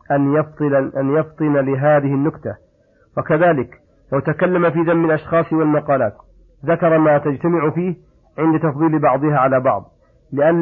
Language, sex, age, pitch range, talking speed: Arabic, male, 50-69, 140-155 Hz, 120 wpm